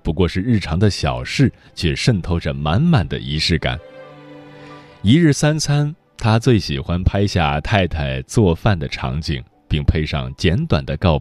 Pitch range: 75-125 Hz